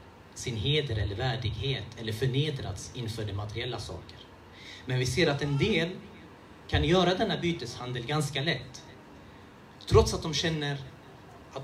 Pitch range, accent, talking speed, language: 100-150 Hz, native, 140 wpm, Swedish